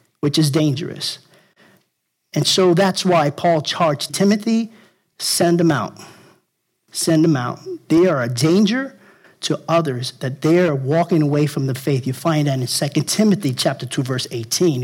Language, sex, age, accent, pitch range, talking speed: English, male, 50-69, American, 160-210 Hz, 160 wpm